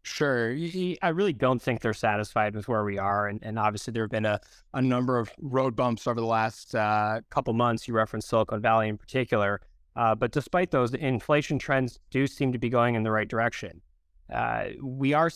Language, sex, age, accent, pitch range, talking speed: English, male, 20-39, American, 115-130 Hz, 210 wpm